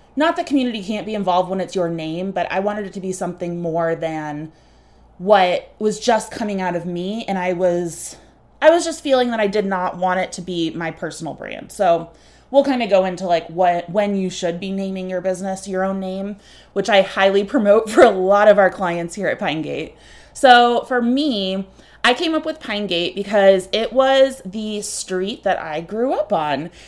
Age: 20-39